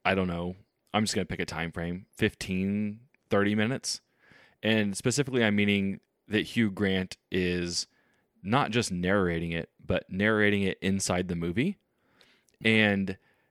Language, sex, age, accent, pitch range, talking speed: English, male, 20-39, American, 90-115 Hz, 145 wpm